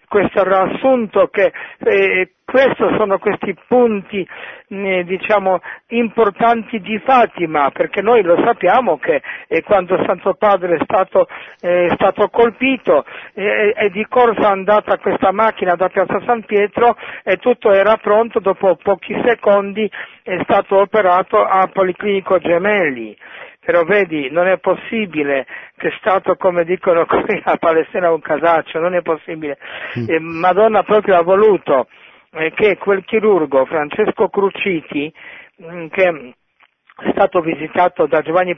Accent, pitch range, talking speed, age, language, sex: native, 165-210 Hz, 135 wpm, 50-69, Italian, male